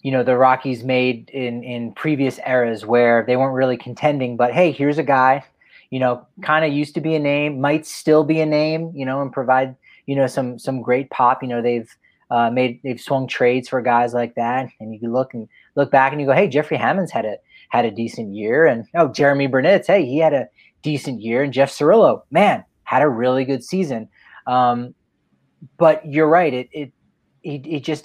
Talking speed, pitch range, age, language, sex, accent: 220 wpm, 120-145 Hz, 30-49, English, male, American